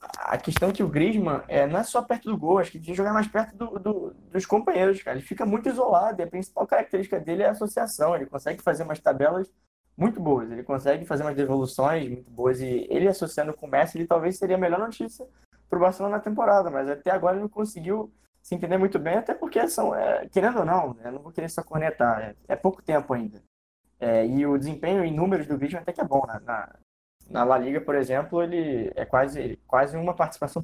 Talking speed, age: 235 wpm, 20-39